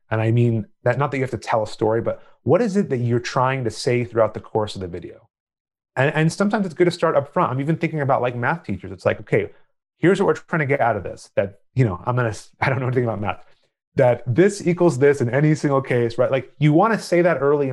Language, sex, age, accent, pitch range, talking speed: English, male, 30-49, American, 110-145 Hz, 275 wpm